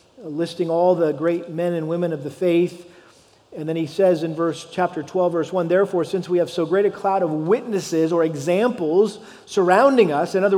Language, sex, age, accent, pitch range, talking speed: English, male, 40-59, American, 170-200 Hz, 205 wpm